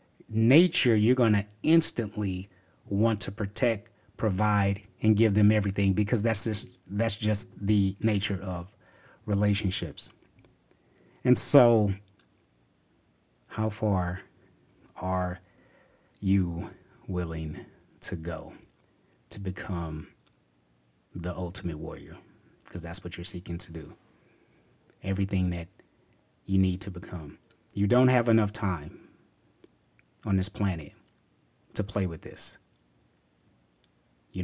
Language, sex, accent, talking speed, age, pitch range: English, male, American, 110 wpm, 30-49, 90-110 Hz